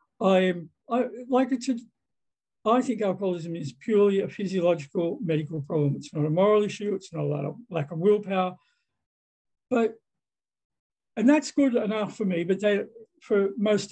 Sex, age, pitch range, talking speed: male, 60-79, 165-220 Hz, 165 wpm